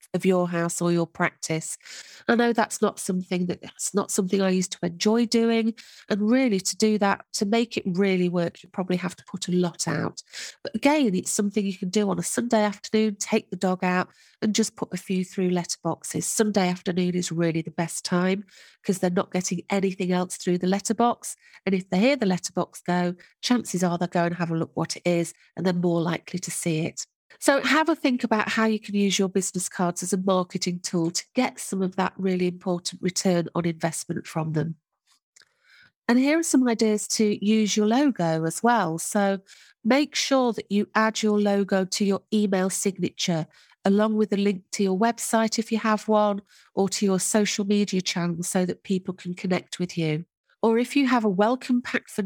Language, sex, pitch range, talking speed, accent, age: English, female, 180-220 Hz, 210 wpm, British, 40-59